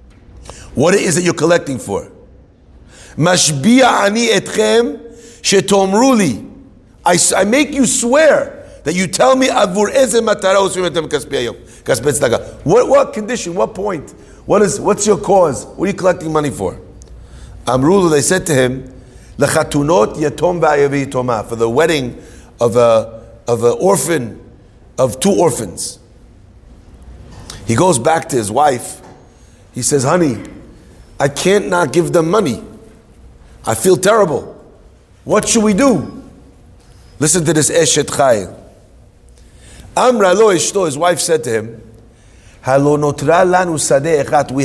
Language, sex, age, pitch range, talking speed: English, male, 50-69, 130-200 Hz, 110 wpm